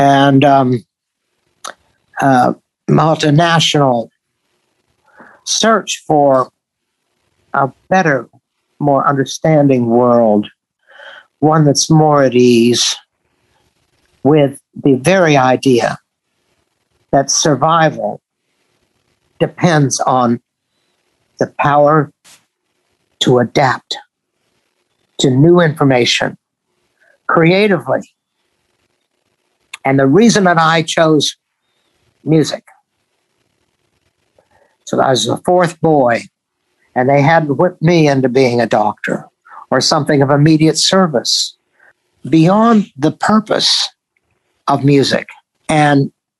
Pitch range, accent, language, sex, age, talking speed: 135-165 Hz, American, English, male, 60-79, 85 wpm